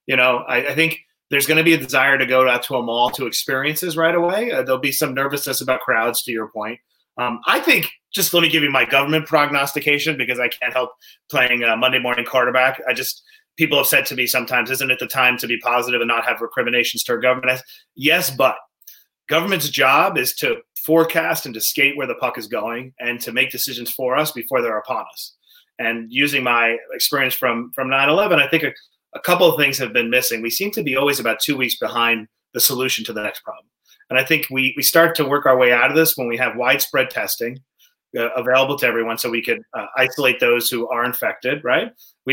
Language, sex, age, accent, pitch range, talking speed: English, male, 30-49, American, 120-150 Hz, 235 wpm